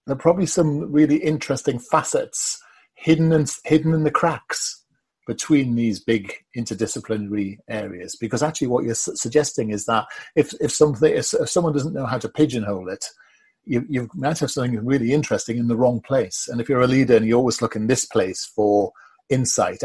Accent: British